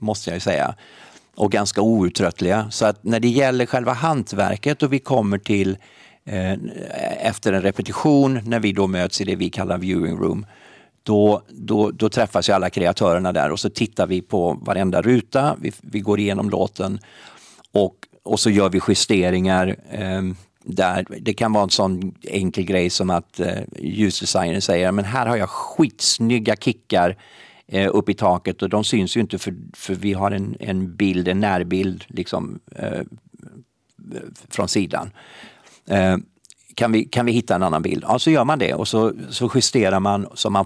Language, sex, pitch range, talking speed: English, male, 95-115 Hz, 180 wpm